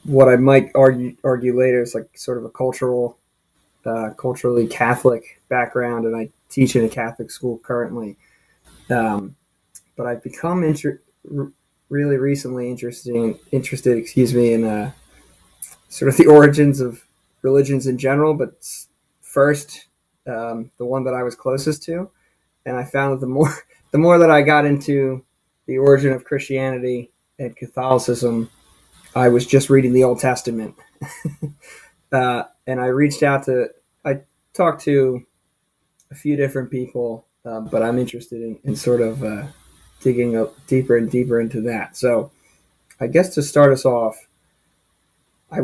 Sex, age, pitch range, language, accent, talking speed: male, 20-39, 120-140 Hz, English, American, 155 wpm